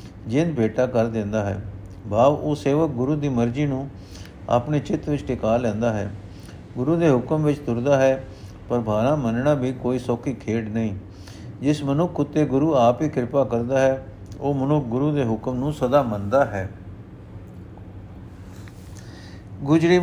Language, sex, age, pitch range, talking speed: Punjabi, male, 50-69, 110-150 Hz, 155 wpm